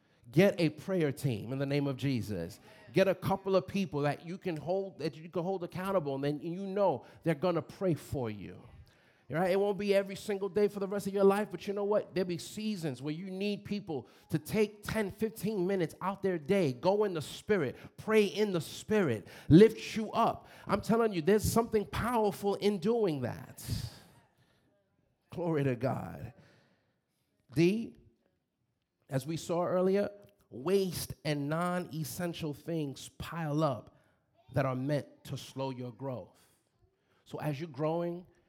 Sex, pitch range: male, 140-185 Hz